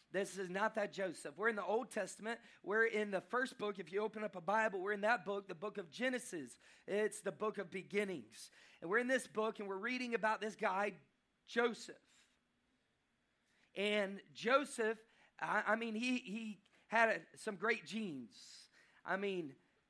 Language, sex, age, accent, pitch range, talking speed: English, male, 40-59, American, 190-220 Hz, 175 wpm